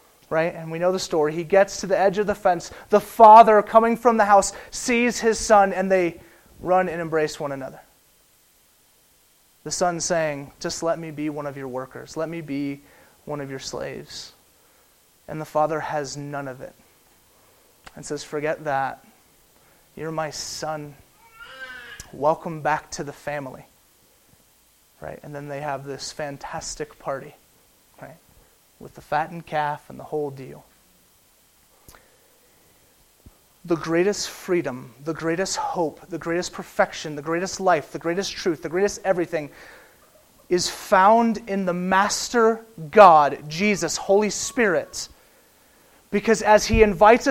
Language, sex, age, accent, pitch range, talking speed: English, male, 30-49, American, 150-200 Hz, 145 wpm